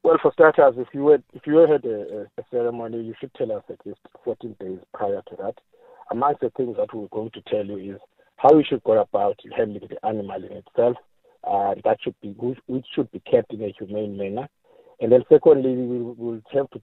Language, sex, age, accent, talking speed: English, male, 50-69, South African, 230 wpm